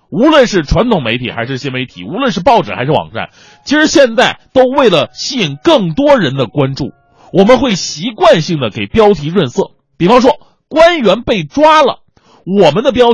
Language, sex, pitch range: Chinese, male, 150-250 Hz